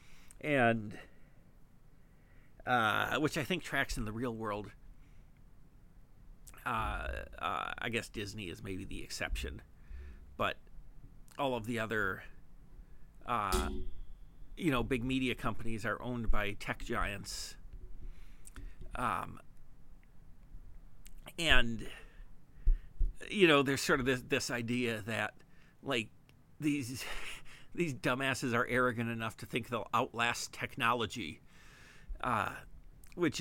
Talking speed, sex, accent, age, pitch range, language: 110 wpm, male, American, 50-69, 100-125 Hz, English